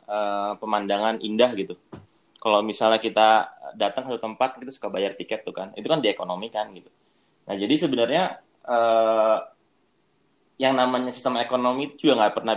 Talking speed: 150 wpm